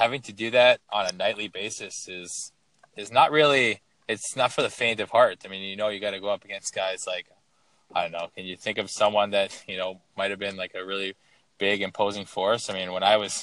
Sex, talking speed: male, 245 wpm